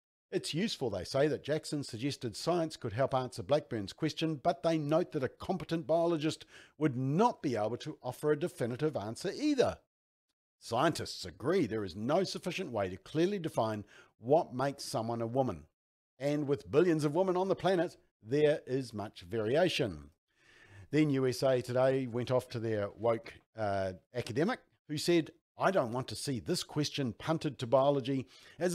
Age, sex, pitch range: 50-69, male, 115-155 Hz